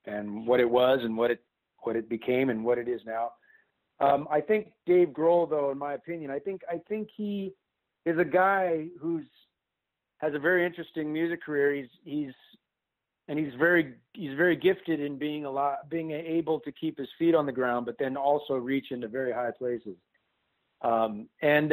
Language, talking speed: English, 195 wpm